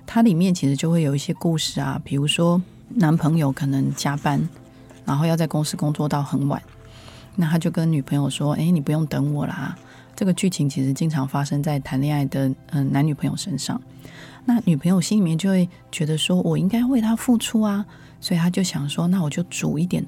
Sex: female